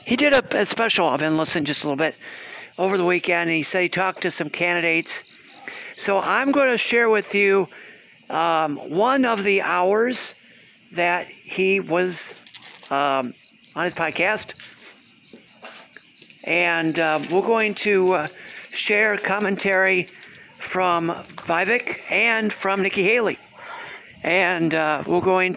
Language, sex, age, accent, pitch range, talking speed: English, male, 50-69, American, 170-210 Hz, 135 wpm